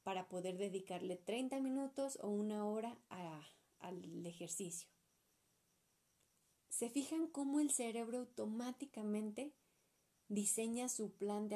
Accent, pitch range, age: Mexican, 195-240 Hz, 30-49